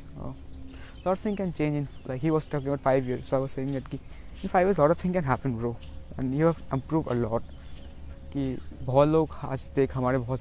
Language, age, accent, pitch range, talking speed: Hindi, 20-39, native, 105-145 Hz, 120 wpm